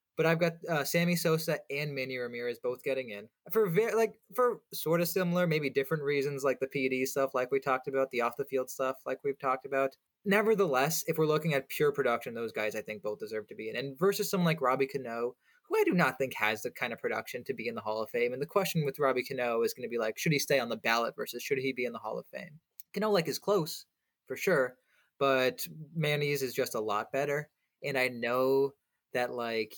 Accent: American